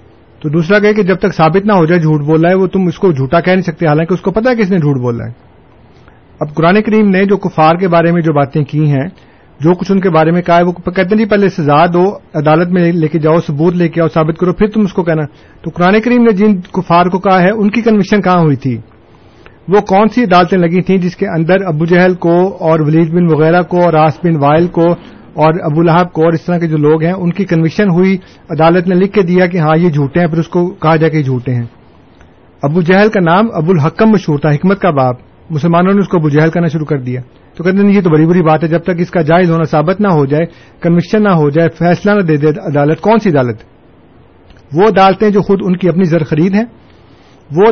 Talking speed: 260 wpm